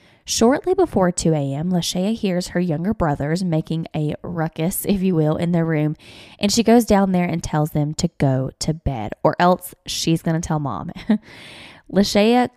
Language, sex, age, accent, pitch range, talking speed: English, female, 20-39, American, 160-205 Hz, 180 wpm